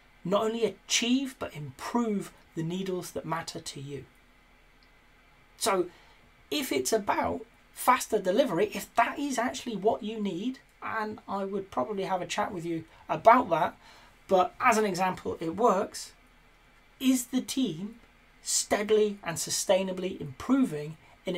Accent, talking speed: British, 140 wpm